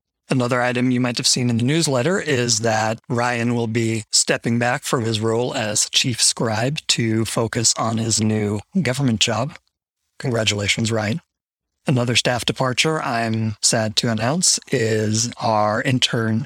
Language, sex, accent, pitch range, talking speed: English, male, American, 115-130 Hz, 150 wpm